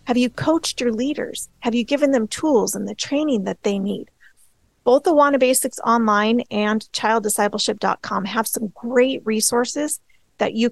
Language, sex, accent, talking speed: English, female, American, 155 wpm